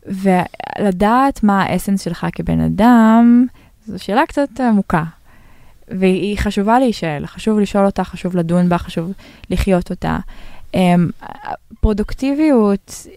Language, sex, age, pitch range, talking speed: Hebrew, female, 20-39, 175-215 Hz, 105 wpm